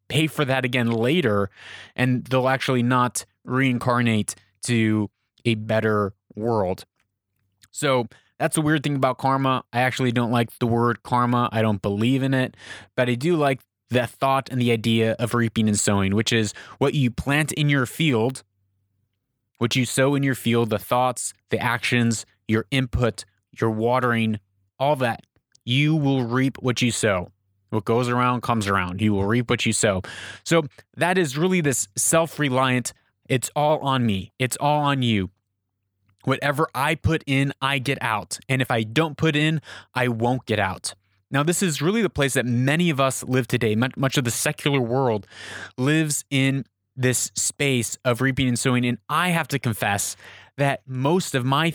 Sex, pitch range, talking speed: male, 110-135 Hz, 175 wpm